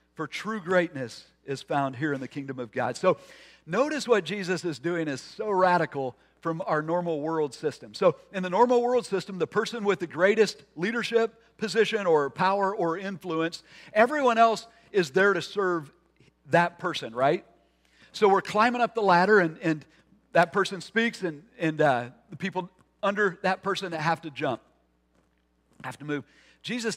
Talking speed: 175 wpm